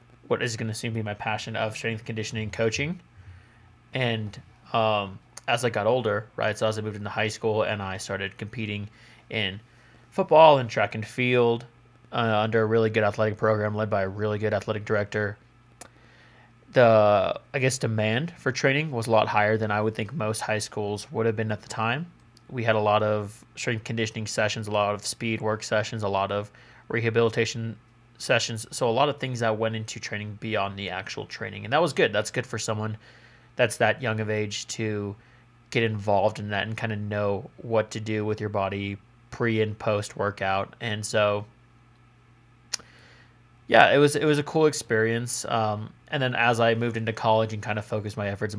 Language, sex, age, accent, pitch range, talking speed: English, male, 20-39, American, 105-120 Hz, 200 wpm